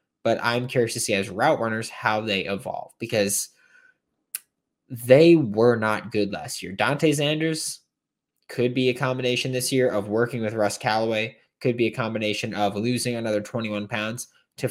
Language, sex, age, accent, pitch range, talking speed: English, male, 20-39, American, 105-145 Hz, 165 wpm